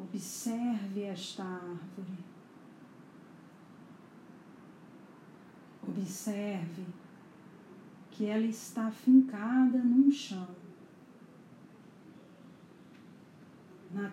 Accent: Brazilian